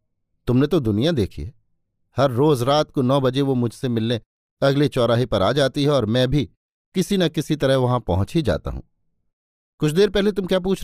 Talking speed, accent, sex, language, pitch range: 210 wpm, native, male, Hindi, 110-165 Hz